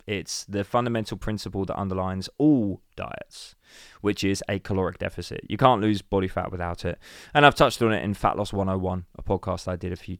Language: English